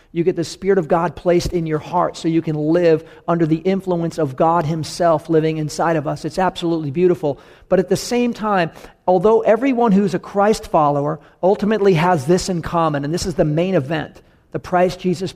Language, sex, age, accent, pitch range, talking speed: English, male, 40-59, American, 160-185 Hz, 205 wpm